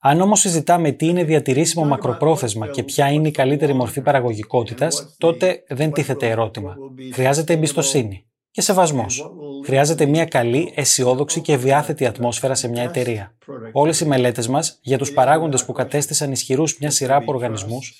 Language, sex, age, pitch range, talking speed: Greek, male, 20-39, 125-155 Hz, 155 wpm